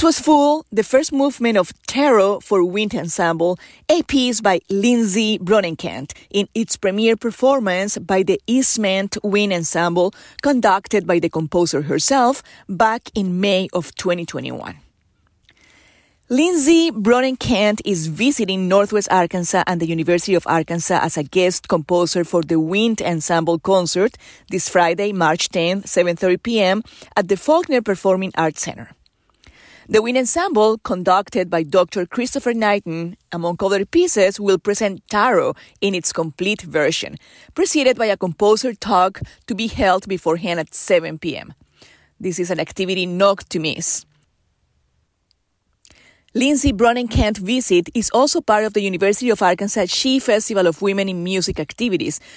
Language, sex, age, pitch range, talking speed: English, female, 30-49, 175-225 Hz, 140 wpm